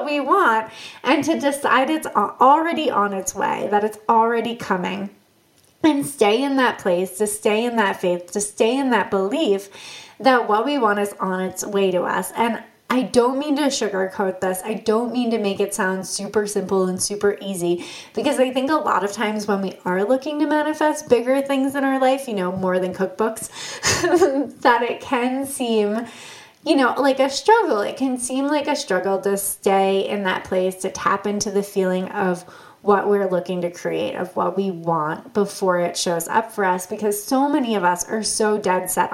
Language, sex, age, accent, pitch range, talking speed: English, female, 20-39, American, 190-245 Hz, 200 wpm